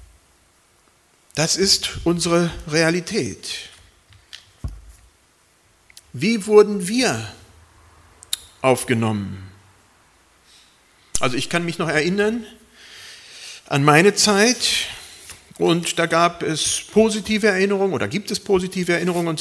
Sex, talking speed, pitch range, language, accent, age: male, 90 wpm, 105-180 Hz, German, German, 40-59